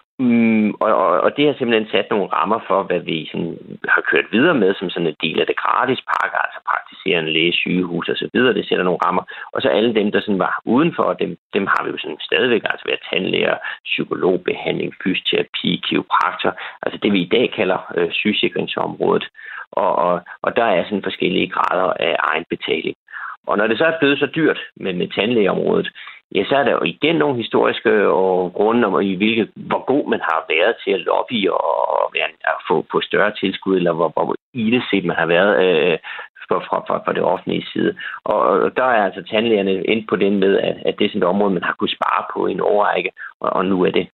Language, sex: Danish, male